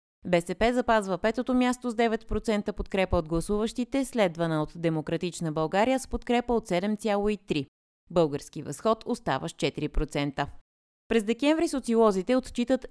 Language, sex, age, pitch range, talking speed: Bulgarian, female, 30-49, 170-230 Hz, 120 wpm